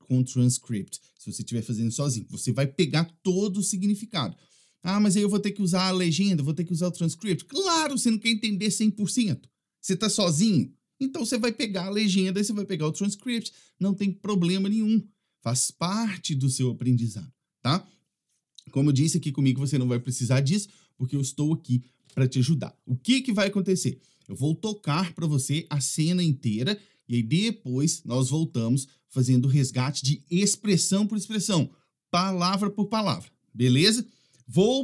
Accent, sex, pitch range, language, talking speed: Brazilian, male, 135-195 Hz, English, 185 wpm